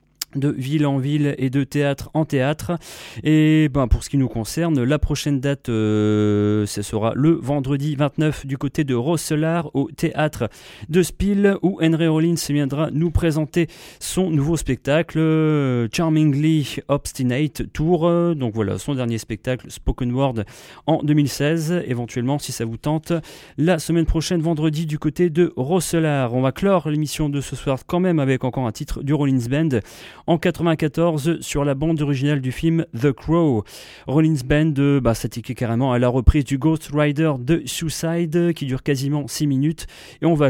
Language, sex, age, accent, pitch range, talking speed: English, male, 30-49, French, 125-160 Hz, 170 wpm